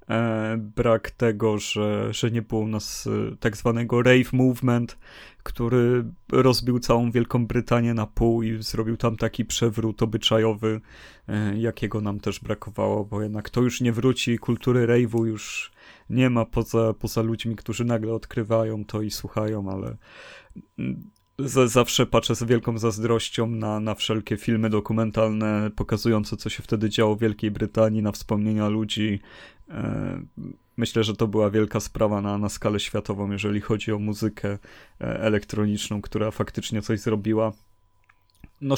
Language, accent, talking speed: Polish, native, 140 wpm